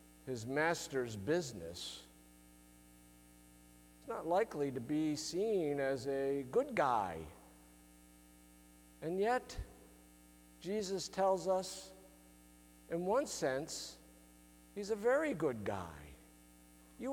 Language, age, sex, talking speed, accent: English, 50-69, male, 95 wpm, American